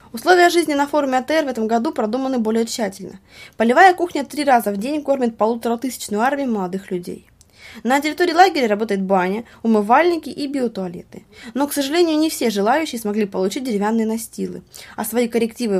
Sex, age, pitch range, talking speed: female, 20-39, 200-270 Hz, 165 wpm